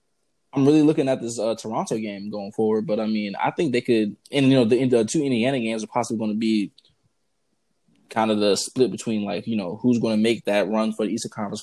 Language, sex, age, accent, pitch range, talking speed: English, male, 20-39, American, 110-125 Hz, 250 wpm